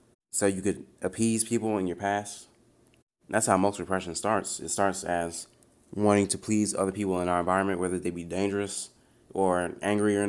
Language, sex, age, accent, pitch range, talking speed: English, male, 20-39, American, 90-105 Hz, 180 wpm